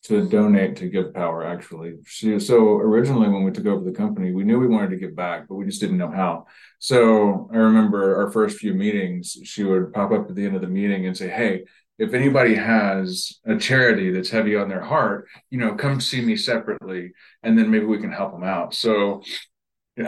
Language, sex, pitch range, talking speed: English, male, 95-125 Hz, 220 wpm